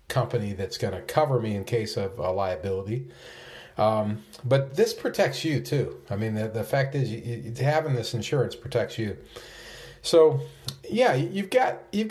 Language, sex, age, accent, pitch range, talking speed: English, male, 40-59, American, 105-135 Hz, 175 wpm